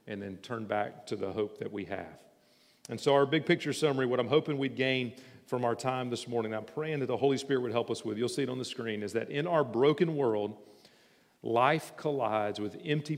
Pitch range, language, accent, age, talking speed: 110-140 Hz, English, American, 40-59, 235 wpm